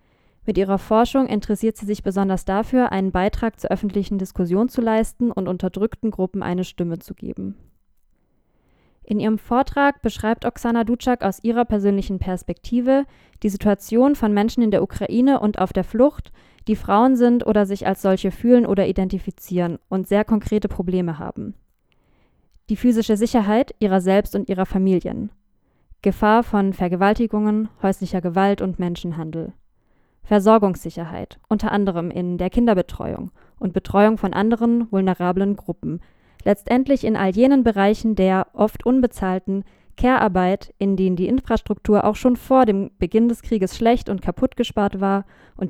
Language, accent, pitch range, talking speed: German, German, 190-230 Hz, 145 wpm